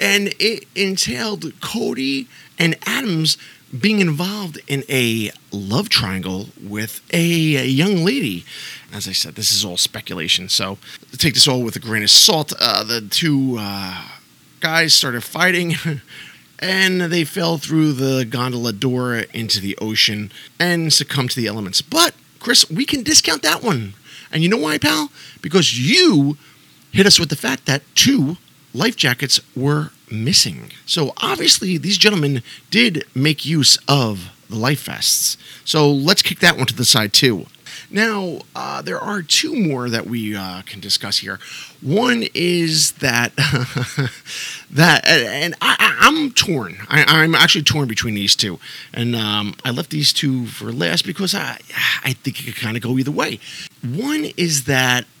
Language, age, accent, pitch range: English, 30-49, American, 115-170 Hz